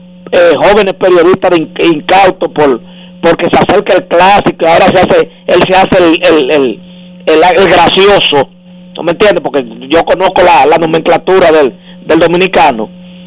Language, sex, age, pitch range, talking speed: Spanish, male, 50-69, 180-205 Hz, 155 wpm